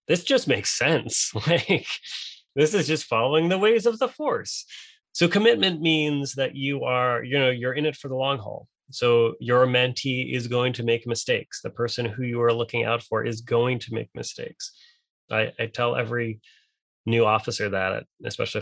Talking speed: 185 wpm